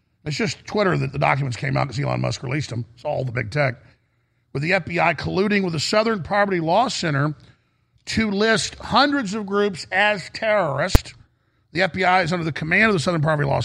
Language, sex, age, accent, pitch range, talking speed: English, male, 40-59, American, 130-180 Hz, 200 wpm